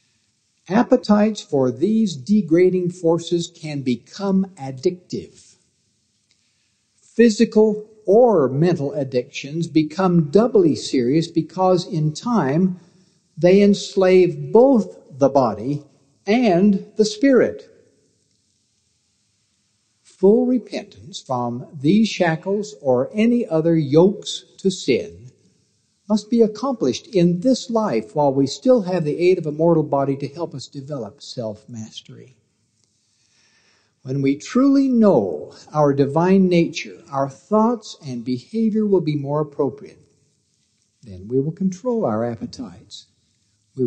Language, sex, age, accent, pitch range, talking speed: English, male, 60-79, American, 125-195 Hz, 110 wpm